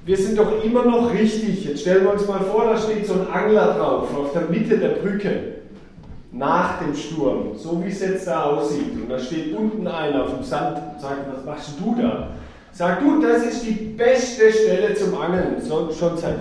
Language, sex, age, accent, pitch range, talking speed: German, male, 40-59, German, 145-215 Hz, 210 wpm